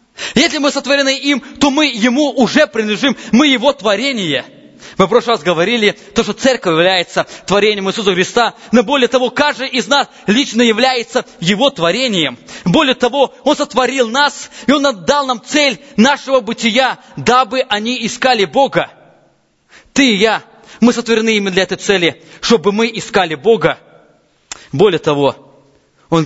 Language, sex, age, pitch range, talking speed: English, male, 20-39, 175-260 Hz, 150 wpm